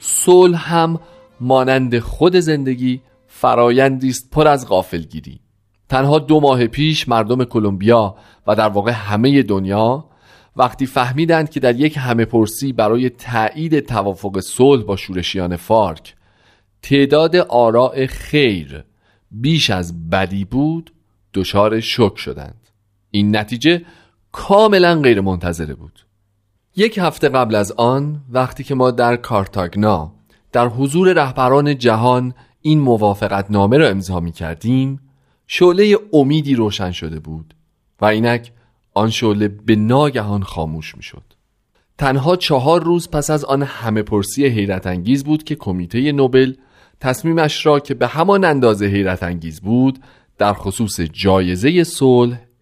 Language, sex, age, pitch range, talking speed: Persian, male, 40-59, 100-140 Hz, 130 wpm